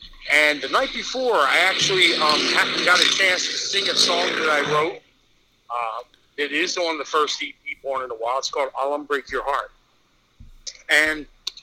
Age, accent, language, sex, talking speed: 50-69, American, English, male, 180 wpm